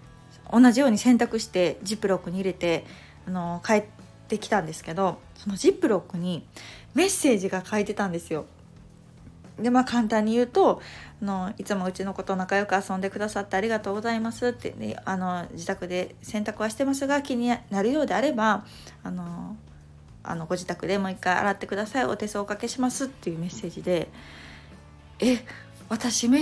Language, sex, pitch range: Japanese, female, 185-250 Hz